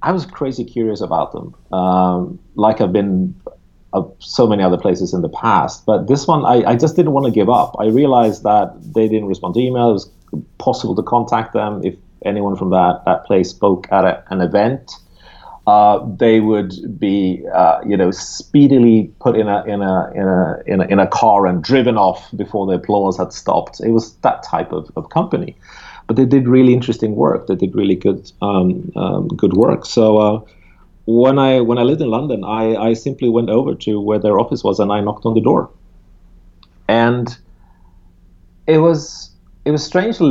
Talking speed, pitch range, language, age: 190 wpm, 95-125 Hz, English, 30-49